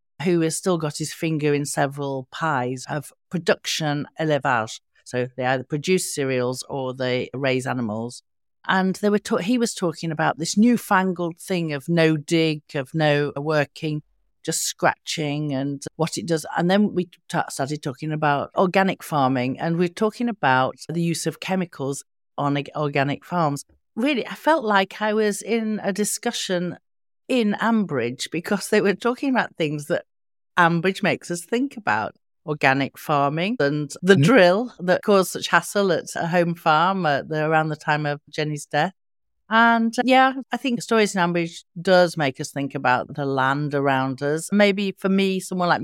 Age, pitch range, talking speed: 50-69, 140-185 Hz, 170 wpm